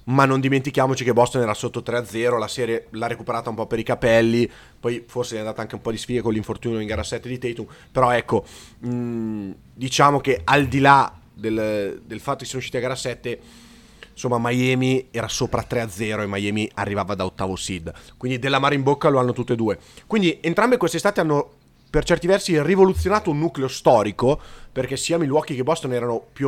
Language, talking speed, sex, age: Italian, 205 wpm, male, 30-49